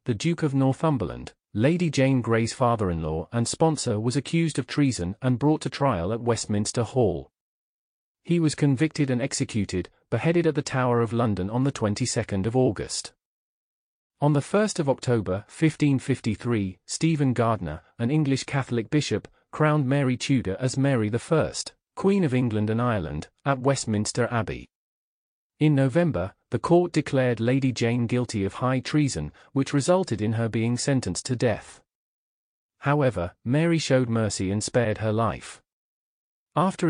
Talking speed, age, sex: 145 wpm, 40-59, male